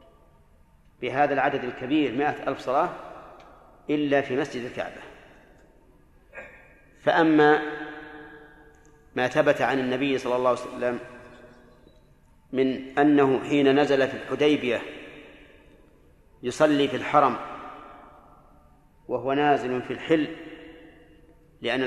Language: Arabic